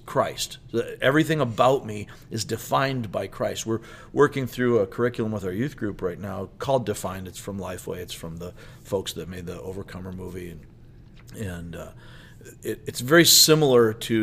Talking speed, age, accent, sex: 170 wpm, 40-59, American, male